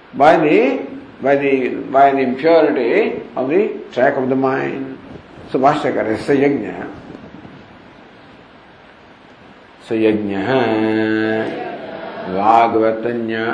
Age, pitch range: 50-69, 110-185 Hz